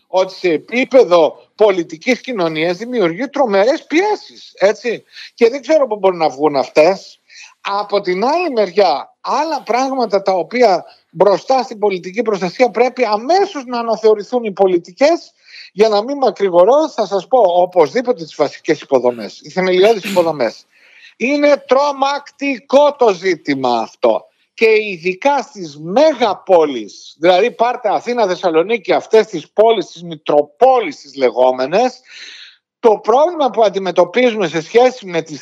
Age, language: 50-69, Greek